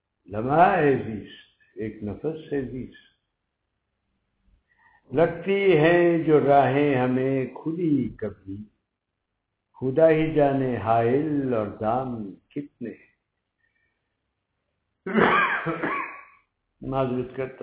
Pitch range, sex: 110-145 Hz, male